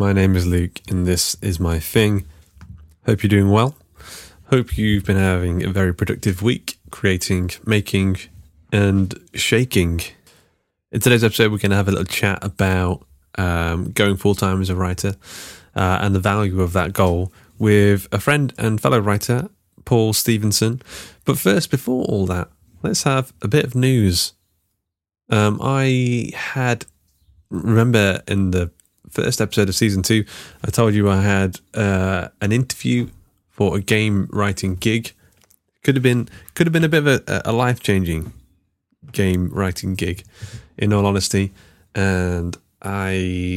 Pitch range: 90-110 Hz